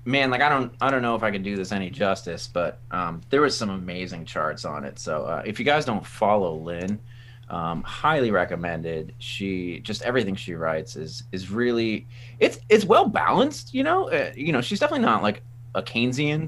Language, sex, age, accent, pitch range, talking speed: English, male, 30-49, American, 95-120 Hz, 210 wpm